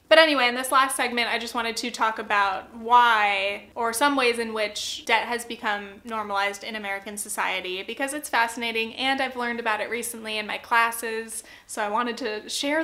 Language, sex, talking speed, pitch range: English, female, 195 wpm, 225-285 Hz